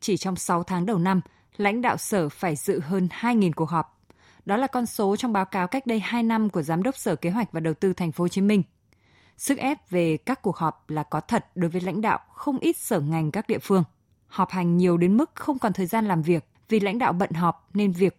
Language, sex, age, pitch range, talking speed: Vietnamese, female, 20-39, 170-230 Hz, 255 wpm